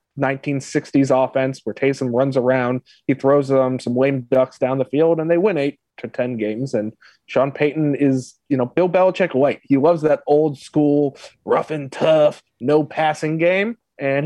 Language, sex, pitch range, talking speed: English, male, 135-180 Hz, 180 wpm